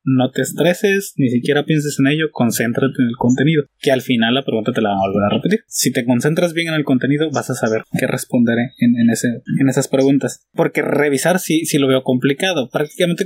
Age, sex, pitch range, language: 20-39, male, 130-160 Hz, Japanese